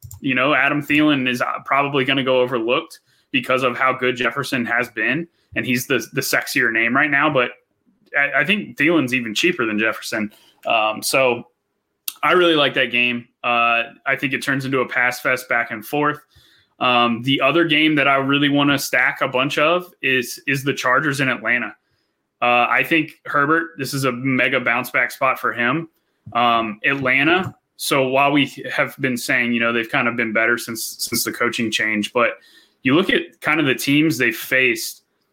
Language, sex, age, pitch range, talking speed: English, male, 20-39, 120-145 Hz, 195 wpm